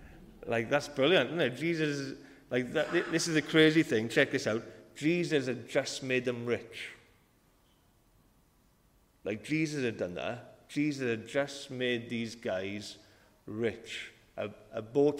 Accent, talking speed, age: British, 140 wpm, 40-59